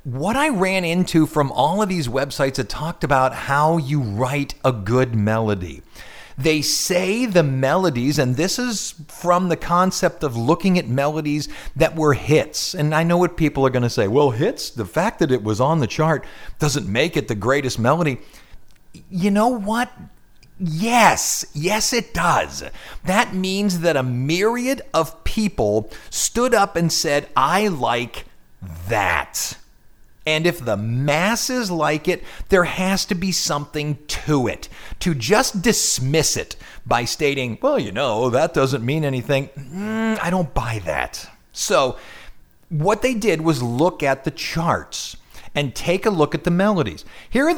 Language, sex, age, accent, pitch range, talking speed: English, male, 40-59, American, 130-180 Hz, 165 wpm